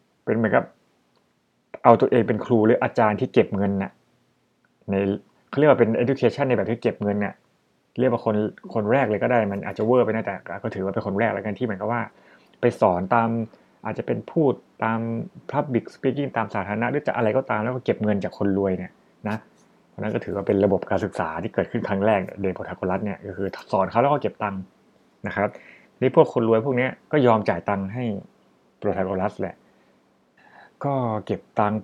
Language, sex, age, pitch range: Thai, male, 20-39, 100-120 Hz